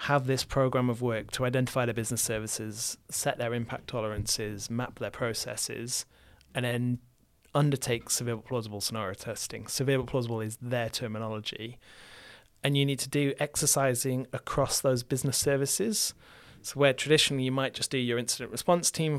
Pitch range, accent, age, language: 115-135 Hz, British, 30-49, English